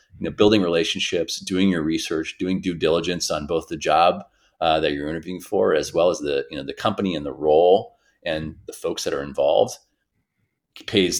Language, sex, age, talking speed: English, male, 30-49, 200 wpm